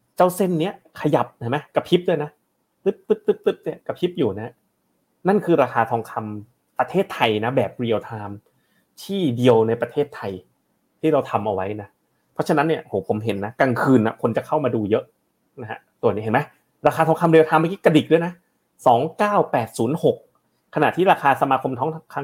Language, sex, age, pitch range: Thai, male, 30-49, 115-160 Hz